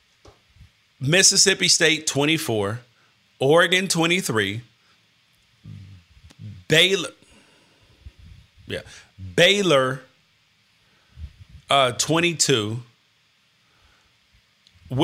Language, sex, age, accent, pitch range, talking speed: English, male, 40-59, American, 110-165 Hz, 50 wpm